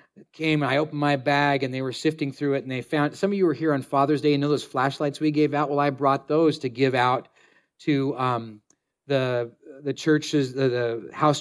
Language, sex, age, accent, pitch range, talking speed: English, male, 40-59, American, 140-165 Hz, 235 wpm